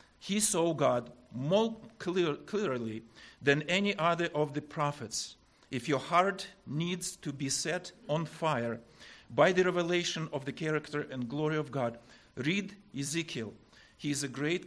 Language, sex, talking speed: English, male, 145 wpm